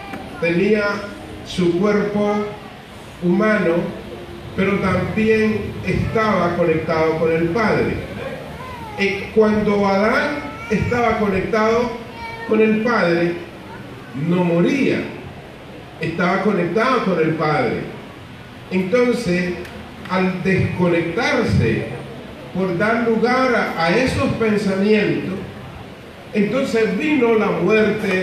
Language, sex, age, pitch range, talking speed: English, male, 40-59, 160-210 Hz, 80 wpm